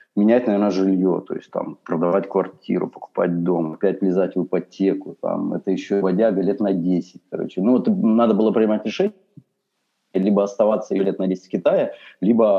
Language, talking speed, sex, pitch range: Russian, 165 wpm, male, 90-120 Hz